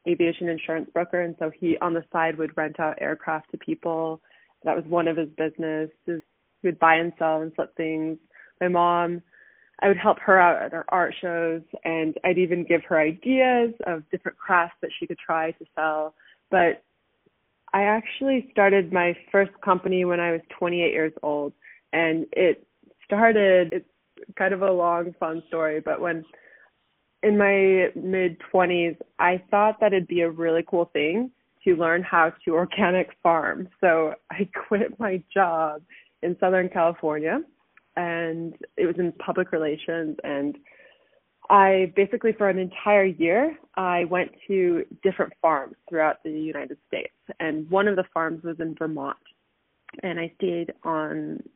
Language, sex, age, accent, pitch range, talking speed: English, female, 20-39, American, 160-190 Hz, 165 wpm